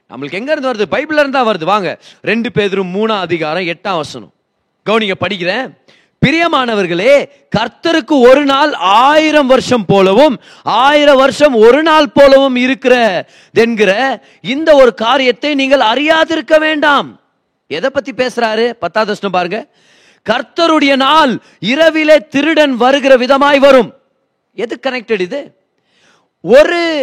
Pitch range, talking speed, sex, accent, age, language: 215-280 Hz, 40 wpm, male, native, 30-49, Tamil